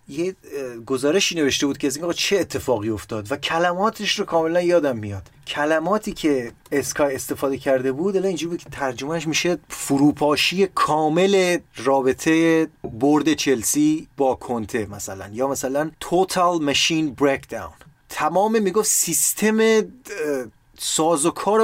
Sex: male